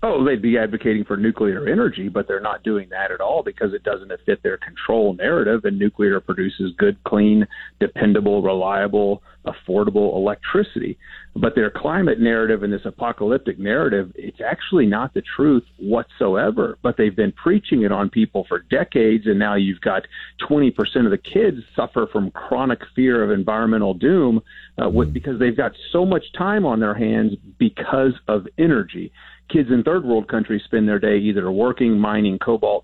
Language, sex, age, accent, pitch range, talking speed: English, male, 40-59, American, 105-145 Hz, 170 wpm